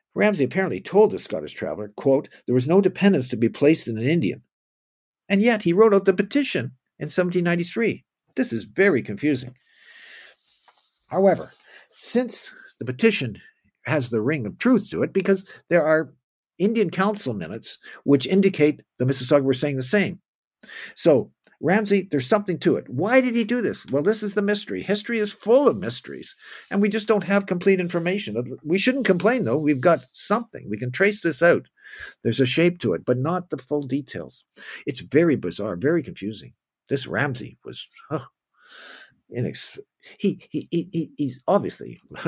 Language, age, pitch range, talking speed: English, 60-79, 140-210 Hz, 165 wpm